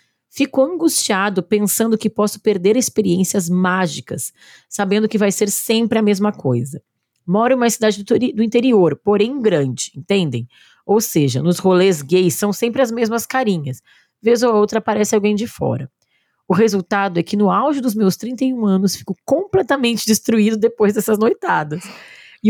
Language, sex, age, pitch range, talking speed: Portuguese, female, 20-39, 180-225 Hz, 155 wpm